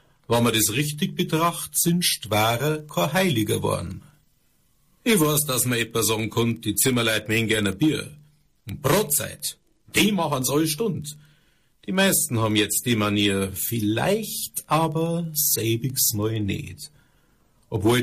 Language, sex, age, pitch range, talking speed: German, male, 50-69, 110-150 Hz, 135 wpm